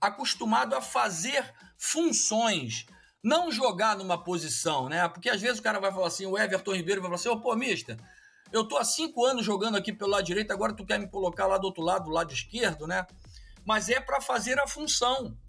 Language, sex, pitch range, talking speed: Portuguese, male, 165-230 Hz, 215 wpm